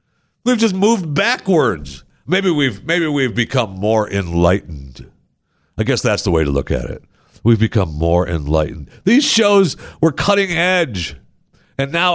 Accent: American